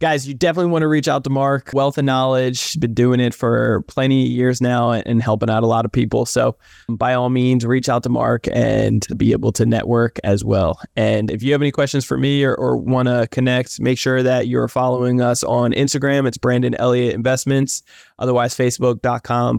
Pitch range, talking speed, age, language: 120-130 Hz, 210 wpm, 20-39, English